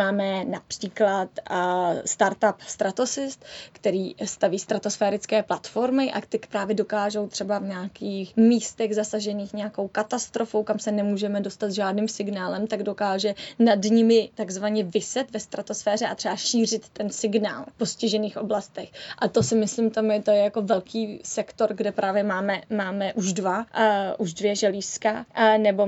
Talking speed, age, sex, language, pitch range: 150 wpm, 20-39, female, Czech, 195-220 Hz